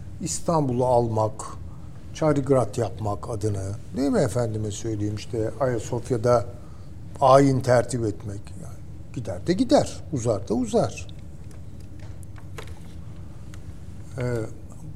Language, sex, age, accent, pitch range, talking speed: Turkish, male, 60-79, native, 100-135 Hz, 90 wpm